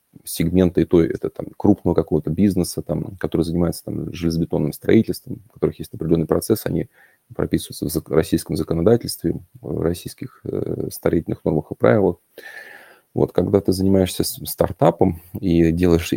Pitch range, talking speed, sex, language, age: 85-95 Hz, 135 wpm, male, Russian, 30-49